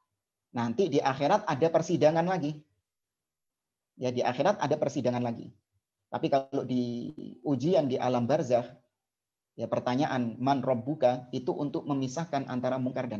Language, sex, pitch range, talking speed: Indonesian, male, 120-155 Hz, 135 wpm